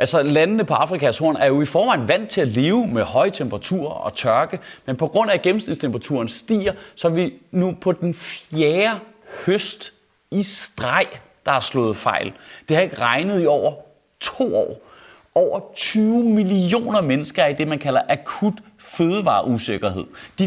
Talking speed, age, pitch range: 175 wpm, 30-49, 165-230 Hz